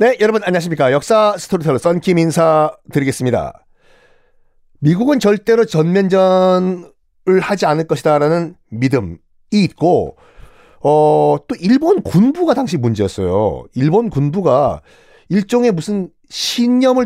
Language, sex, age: Korean, male, 40-59